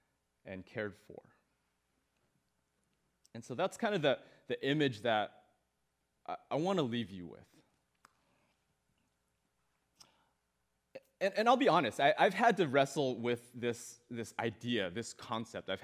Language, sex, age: English, male, 30-49